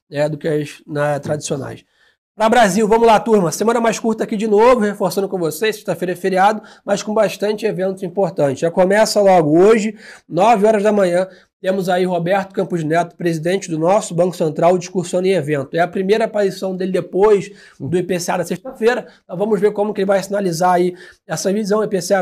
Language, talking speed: Portuguese, 195 wpm